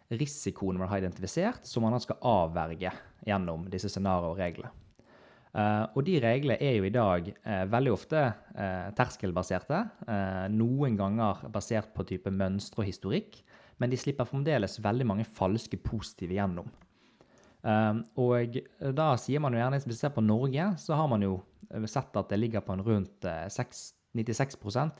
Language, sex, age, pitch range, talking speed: English, male, 20-39, 100-125 Hz, 145 wpm